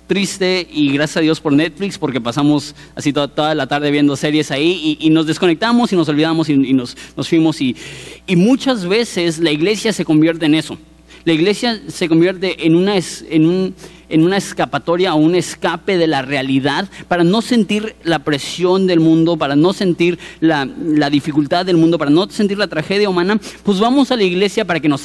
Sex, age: male, 30-49